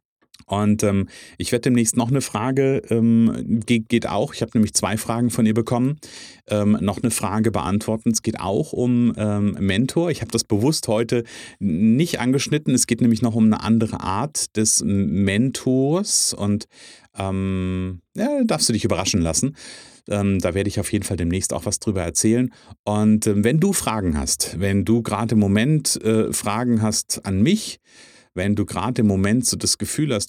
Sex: male